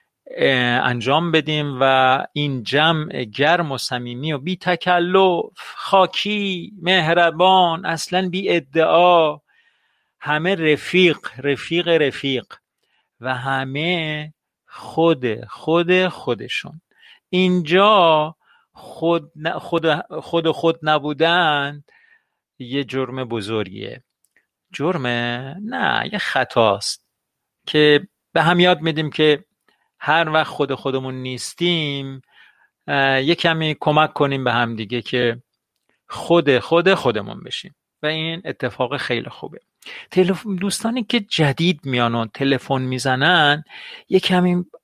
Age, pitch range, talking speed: 50-69, 135-175 Hz, 100 wpm